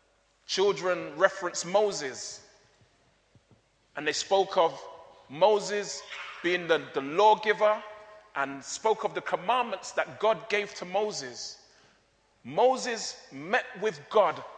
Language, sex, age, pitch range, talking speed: English, male, 30-49, 160-215 Hz, 105 wpm